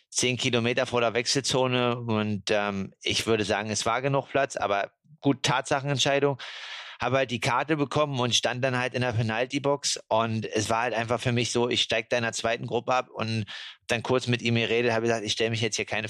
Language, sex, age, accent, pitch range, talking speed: German, male, 30-49, German, 115-130 Hz, 215 wpm